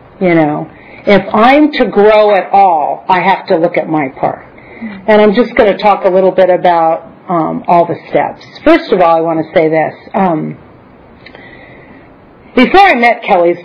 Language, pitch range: English, 175-210 Hz